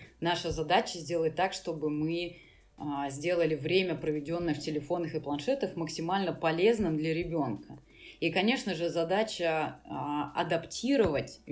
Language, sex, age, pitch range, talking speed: Russian, female, 20-39, 155-185 Hz, 115 wpm